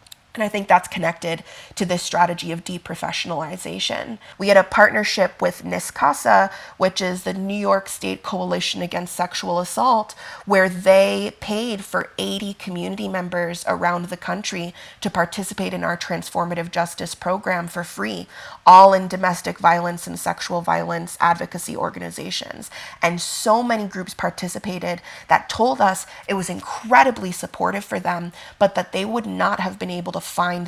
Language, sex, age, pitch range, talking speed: English, female, 30-49, 175-200 Hz, 155 wpm